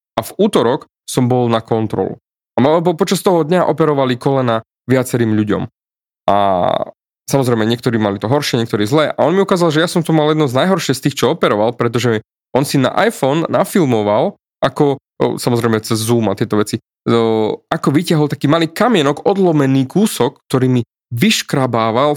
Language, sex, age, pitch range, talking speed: Slovak, male, 20-39, 115-155 Hz, 170 wpm